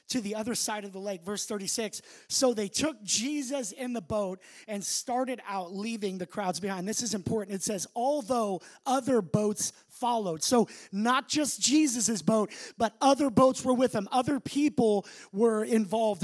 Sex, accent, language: male, American, English